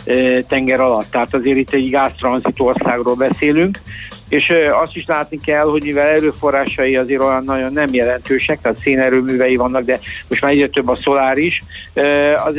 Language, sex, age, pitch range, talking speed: Hungarian, male, 60-79, 130-150 Hz, 160 wpm